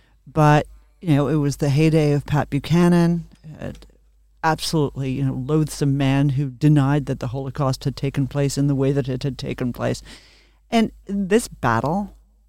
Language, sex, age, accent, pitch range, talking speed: English, male, 40-59, American, 135-170 Hz, 165 wpm